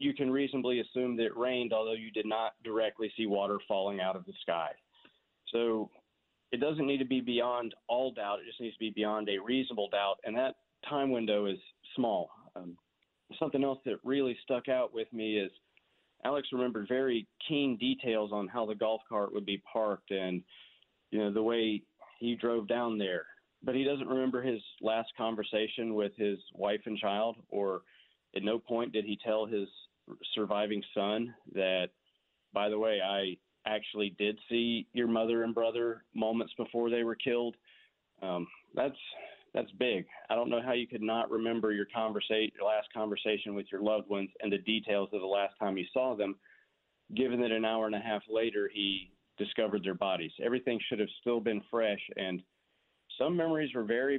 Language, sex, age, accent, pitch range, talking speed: English, male, 40-59, American, 105-120 Hz, 185 wpm